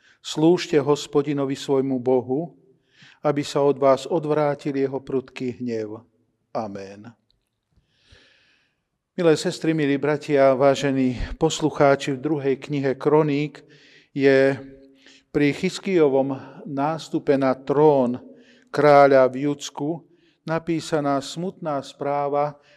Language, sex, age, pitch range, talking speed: Slovak, male, 40-59, 135-160 Hz, 90 wpm